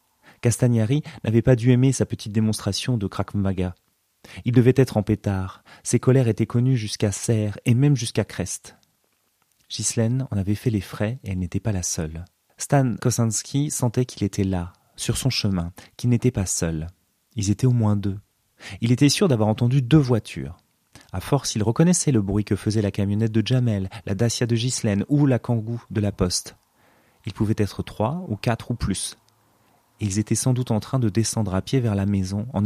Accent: French